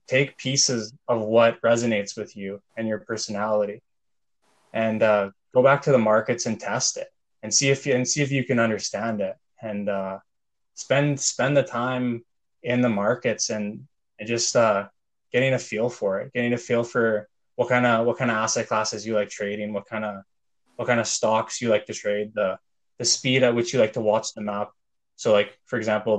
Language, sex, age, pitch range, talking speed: English, male, 20-39, 105-120 Hz, 205 wpm